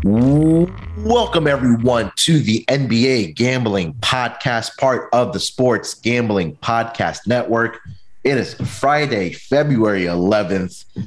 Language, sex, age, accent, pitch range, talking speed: English, male, 30-49, American, 105-130 Hz, 105 wpm